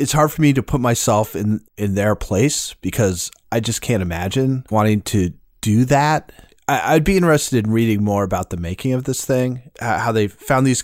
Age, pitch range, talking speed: 30-49, 105-135 Hz, 210 wpm